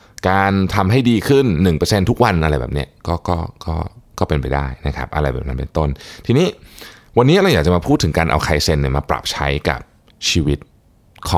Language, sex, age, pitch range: Thai, male, 20-39, 75-100 Hz